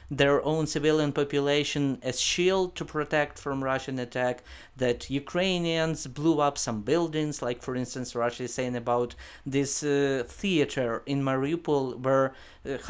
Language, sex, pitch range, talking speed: English, male, 130-155 Hz, 145 wpm